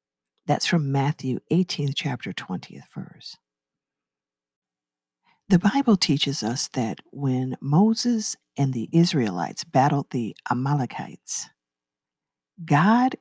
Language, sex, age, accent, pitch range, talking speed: English, female, 50-69, American, 115-180 Hz, 95 wpm